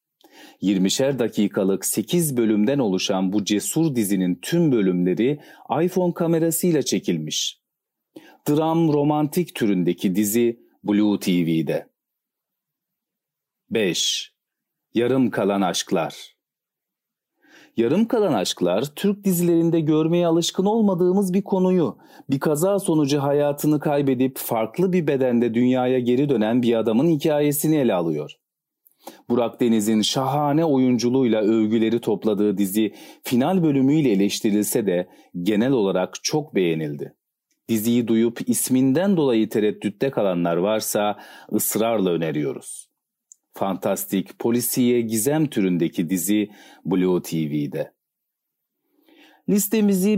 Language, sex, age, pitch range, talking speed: Turkish, male, 40-59, 105-160 Hz, 95 wpm